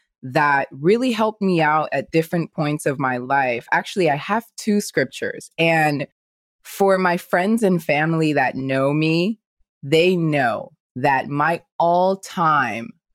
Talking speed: 140 wpm